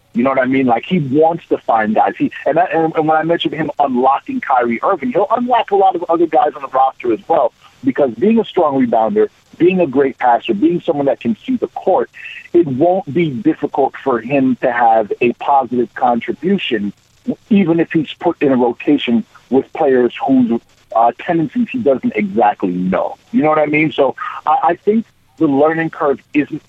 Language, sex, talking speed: English, male, 200 wpm